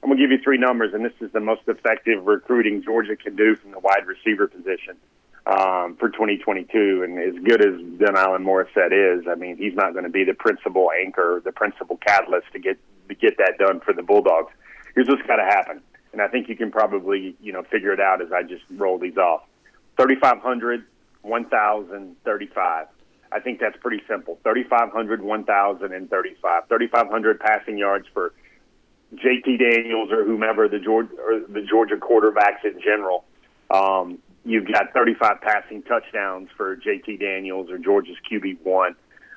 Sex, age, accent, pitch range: male, 40-59, American, 100-125 Hz